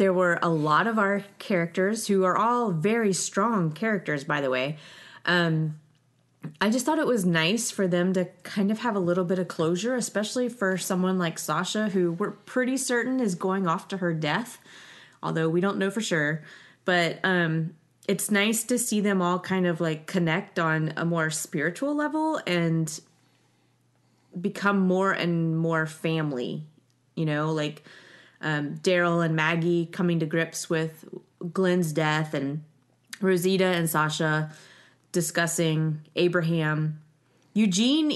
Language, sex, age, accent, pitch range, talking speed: English, female, 30-49, American, 165-210 Hz, 155 wpm